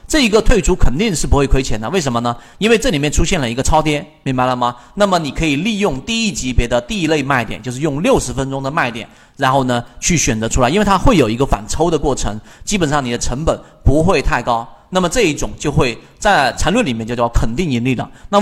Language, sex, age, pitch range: Chinese, male, 40-59, 120-170 Hz